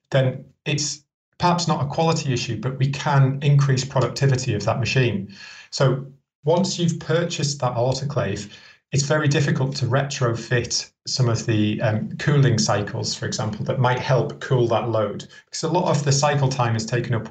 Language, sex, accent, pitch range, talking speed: English, male, British, 115-140 Hz, 175 wpm